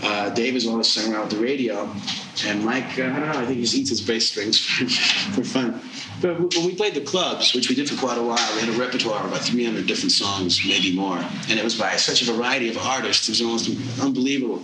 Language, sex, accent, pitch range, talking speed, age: English, male, American, 110-135 Hz, 250 wpm, 30-49